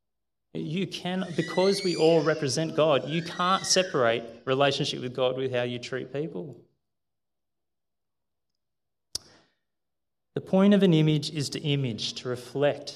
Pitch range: 110-140 Hz